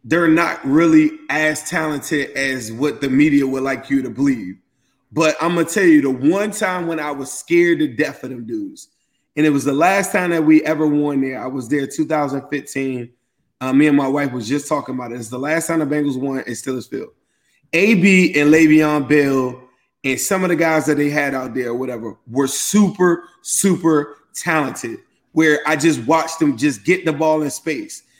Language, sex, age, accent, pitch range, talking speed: English, male, 20-39, American, 145-190 Hz, 205 wpm